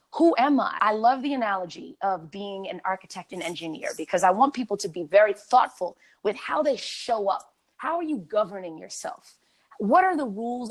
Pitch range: 210-295 Hz